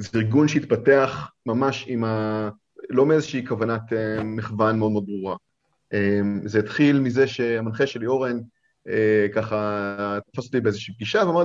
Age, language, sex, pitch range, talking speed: 30-49, Hebrew, male, 110-145 Hz, 130 wpm